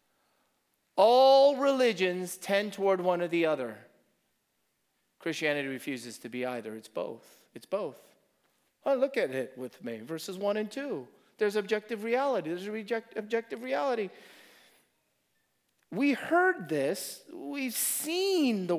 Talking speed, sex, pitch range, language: 125 wpm, male, 150-220 Hz, English